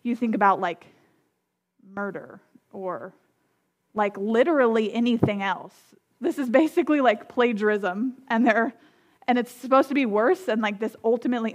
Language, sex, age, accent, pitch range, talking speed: English, female, 20-39, American, 205-260 Hz, 140 wpm